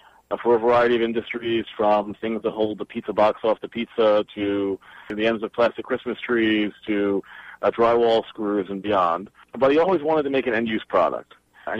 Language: English